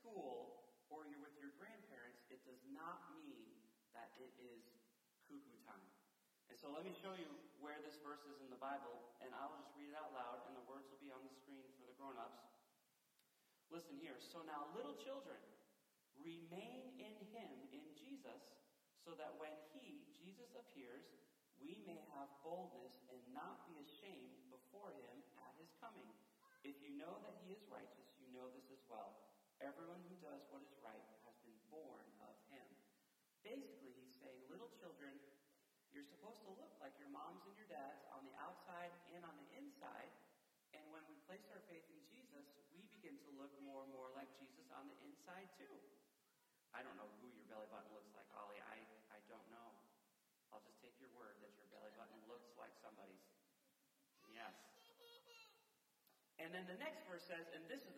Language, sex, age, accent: English, male, 40-59, American